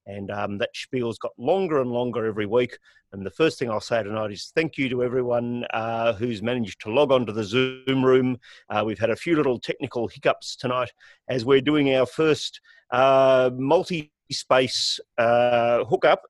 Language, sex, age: English, male, 40-59